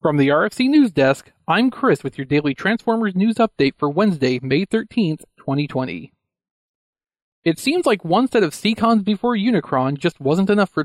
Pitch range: 140-205 Hz